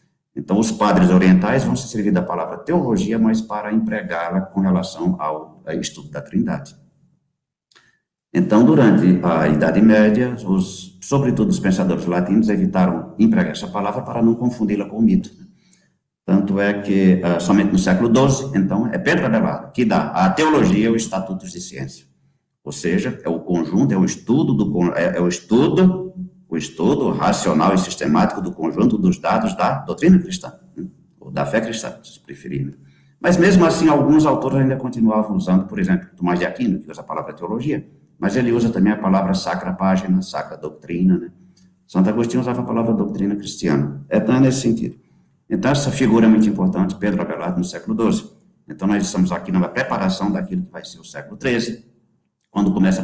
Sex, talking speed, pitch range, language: male, 180 wpm, 90-135 Hz, Portuguese